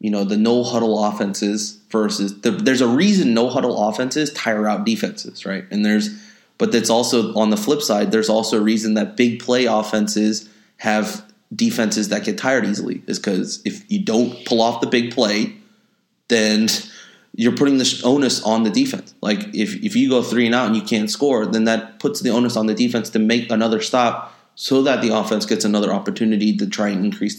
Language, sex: English, male